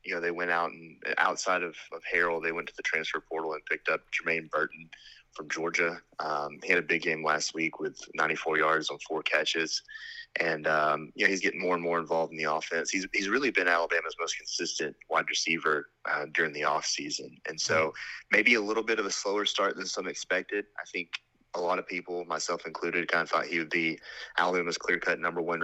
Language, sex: English, male